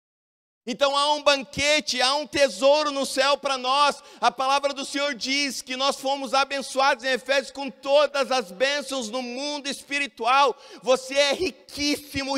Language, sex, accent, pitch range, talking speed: Portuguese, male, Brazilian, 180-275 Hz, 155 wpm